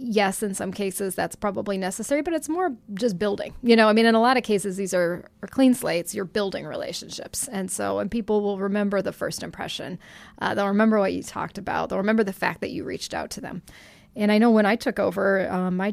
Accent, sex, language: American, female, English